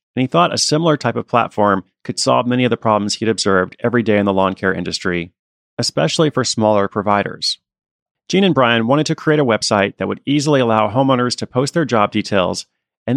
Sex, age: male, 40-59